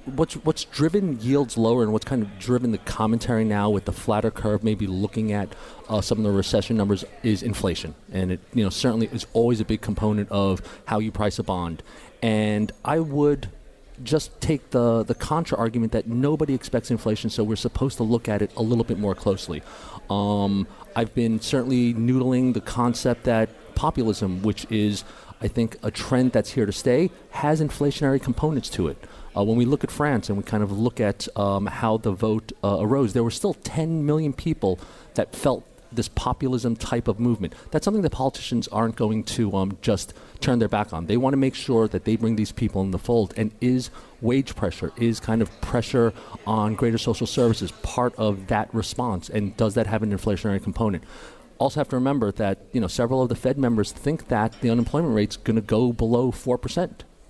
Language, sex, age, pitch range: English, male, 40-59, 105-125 Hz